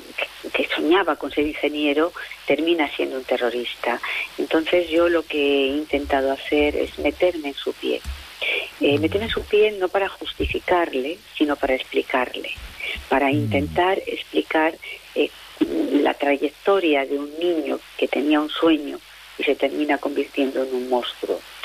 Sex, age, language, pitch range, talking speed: female, 40-59, Spanish, 135-165 Hz, 145 wpm